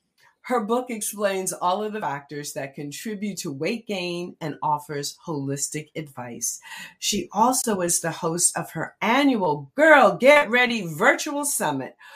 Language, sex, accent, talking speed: English, female, American, 145 wpm